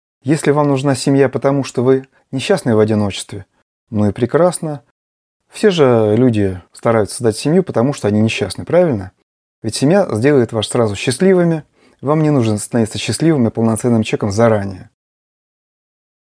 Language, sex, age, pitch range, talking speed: Russian, male, 30-49, 110-135 Hz, 145 wpm